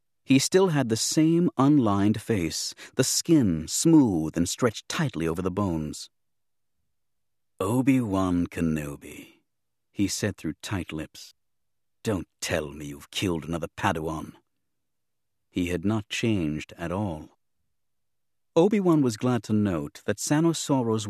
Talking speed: 120 wpm